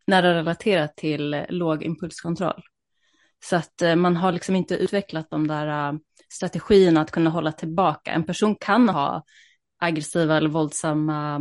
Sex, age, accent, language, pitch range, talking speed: female, 30-49, native, Swedish, 160-190 Hz, 135 wpm